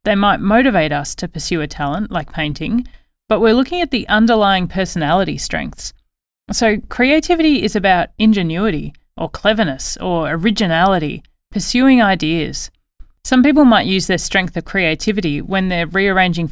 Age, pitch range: 30-49, 165-225 Hz